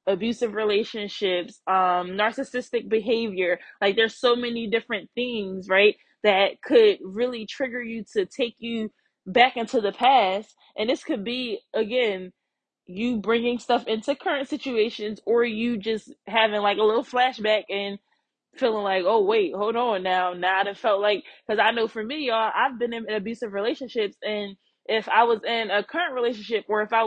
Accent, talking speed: American, 170 wpm